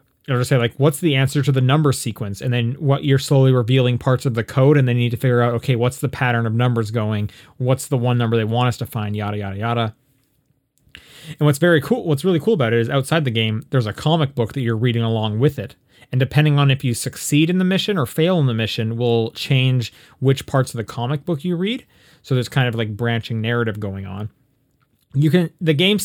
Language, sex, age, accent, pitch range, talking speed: English, male, 30-49, American, 120-155 Hz, 245 wpm